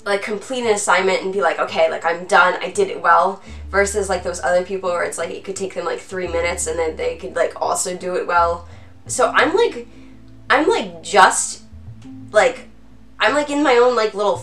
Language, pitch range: English, 165-230 Hz